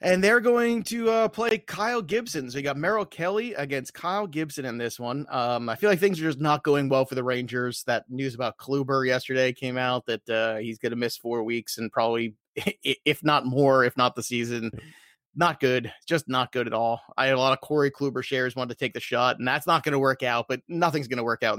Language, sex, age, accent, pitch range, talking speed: English, male, 30-49, American, 125-170 Hz, 245 wpm